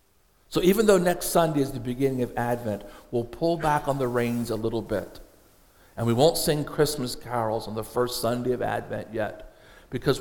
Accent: American